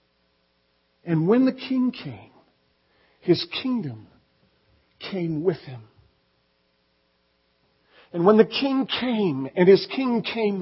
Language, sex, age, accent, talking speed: English, male, 50-69, American, 105 wpm